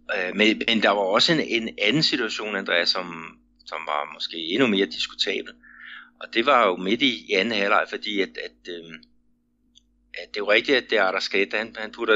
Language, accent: Danish, native